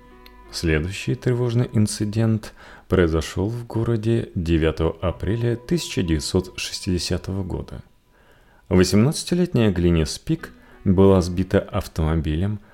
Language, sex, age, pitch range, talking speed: Russian, male, 40-59, 80-115 Hz, 75 wpm